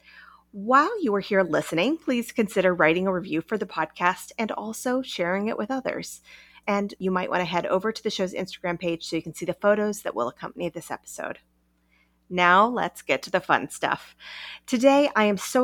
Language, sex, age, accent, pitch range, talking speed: English, female, 30-49, American, 175-235 Hz, 205 wpm